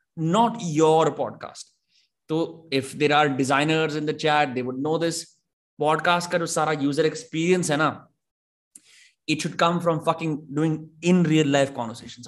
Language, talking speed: Hindi, 155 wpm